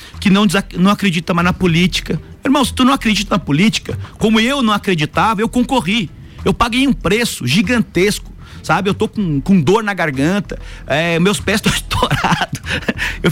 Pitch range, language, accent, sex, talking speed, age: 145-195 Hz, Portuguese, Brazilian, male, 175 wpm, 40-59